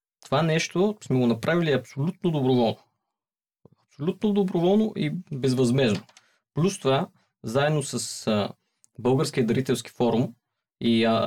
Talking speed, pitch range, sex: 100 wpm, 115-150 Hz, male